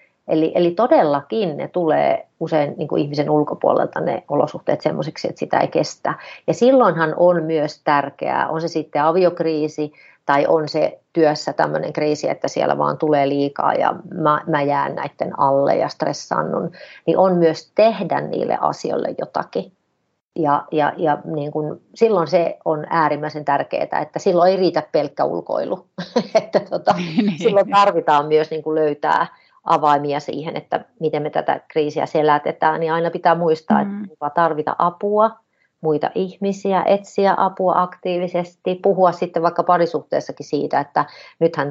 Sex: female